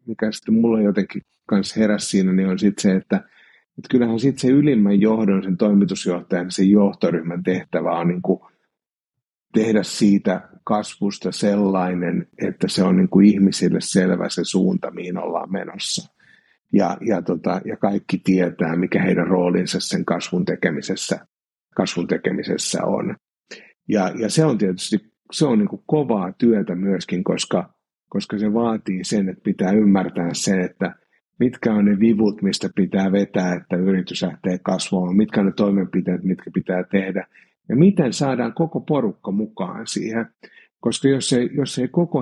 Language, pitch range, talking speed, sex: Finnish, 95-110 Hz, 150 wpm, male